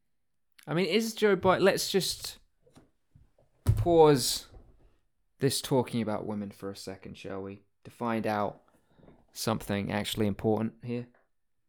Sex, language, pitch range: male, English, 100-120 Hz